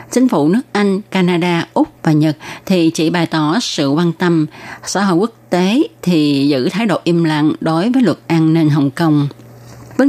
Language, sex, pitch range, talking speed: Vietnamese, female, 155-190 Hz, 195 wpm